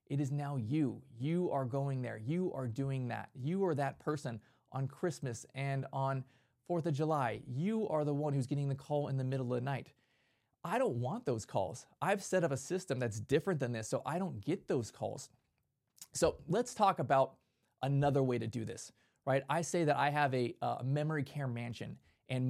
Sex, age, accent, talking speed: male, 20-39, American, 210 wpm